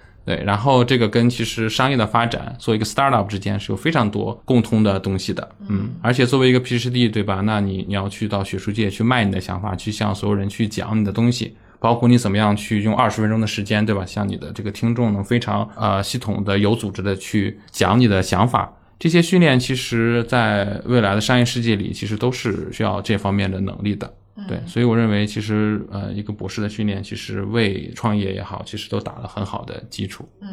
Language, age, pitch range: Chinese, 20-39, 100-120 Hz